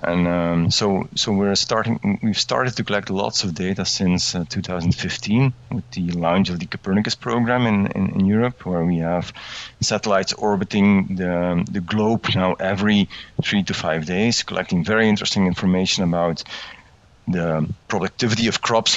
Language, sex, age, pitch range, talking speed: English, male, 40-59, 90-110 Hz, 160 wpm